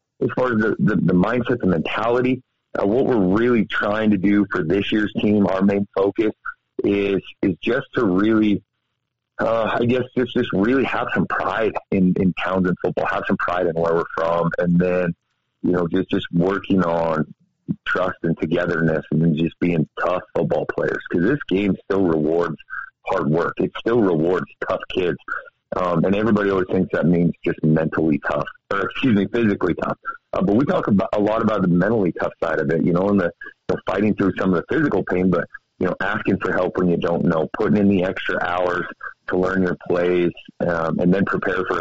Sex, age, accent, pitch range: male, 40-59, American, 85-105 Hz